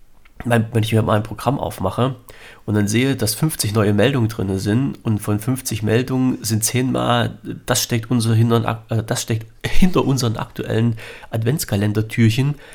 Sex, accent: male, German